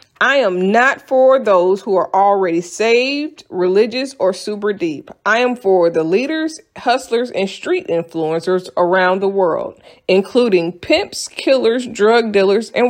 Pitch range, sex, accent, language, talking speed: 180-260 Hz, female, American, English, 145 wpm